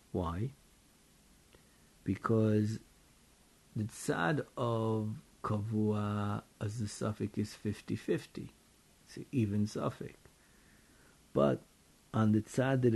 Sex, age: male, 50-69